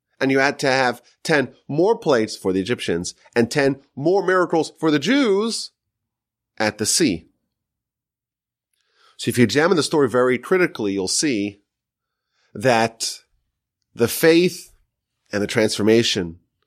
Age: 30-49